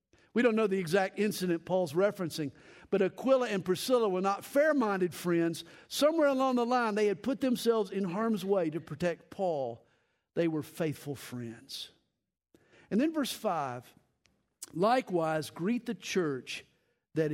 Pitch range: 150-225 Hz